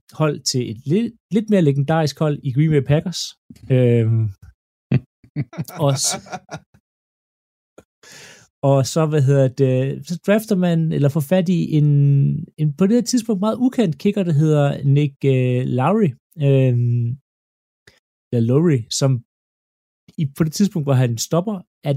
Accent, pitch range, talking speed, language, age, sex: native, 120-160 Hz, 140 wpm, Danish, 30-49, male